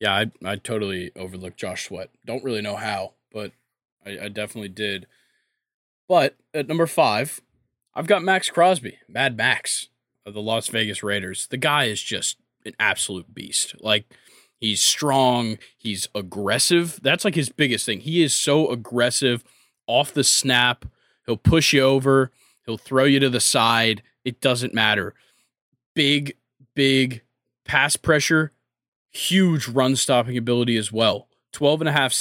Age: 20-39